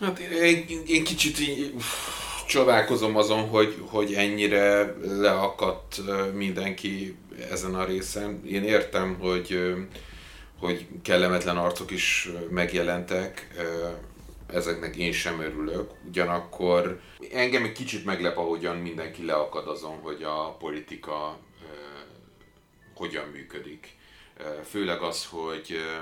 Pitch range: 75-95 Hz